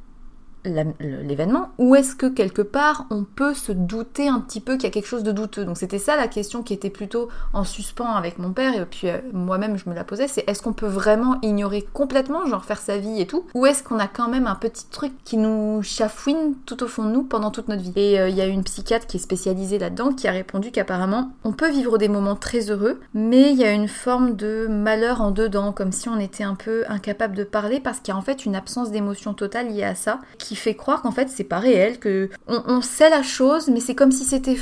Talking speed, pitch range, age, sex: 260 wpm, 205-255 Hz, 20-39, female